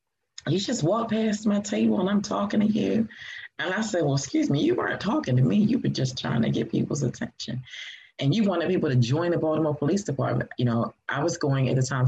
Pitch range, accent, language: 125-150 Hz, American, English